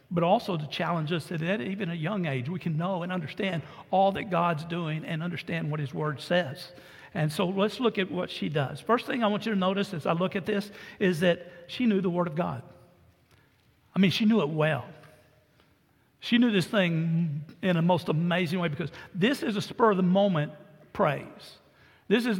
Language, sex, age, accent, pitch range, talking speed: English, male, 60-79, American, 165-205 Hz, 215 wpm